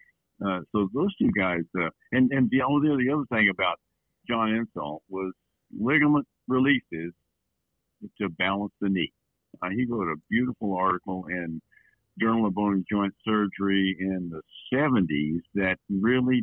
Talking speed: 145 wpm